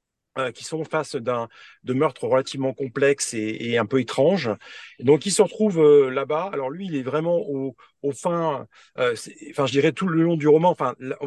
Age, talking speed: 40-59, 220 wpm